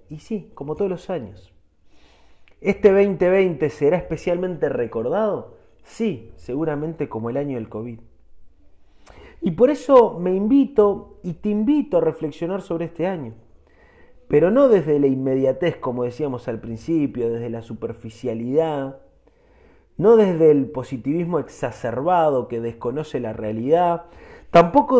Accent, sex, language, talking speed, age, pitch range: Argentinian, male, Spanish, 125 wpm, 30-49, 115-190 Hz